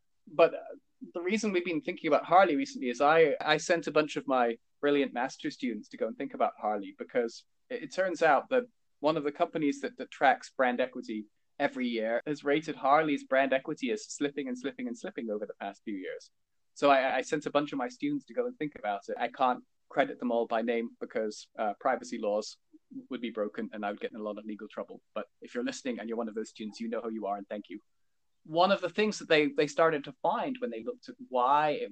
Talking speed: 250 wpm